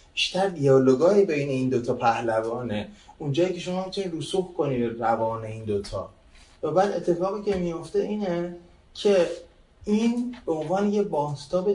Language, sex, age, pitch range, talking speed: Persian, male, 30-49, 110-150 Hz, 140 wpm